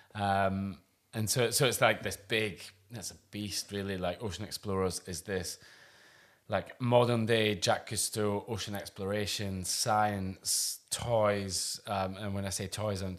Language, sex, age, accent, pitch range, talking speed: English, male, 20-39, British, 90-105 Hz, 150 wpm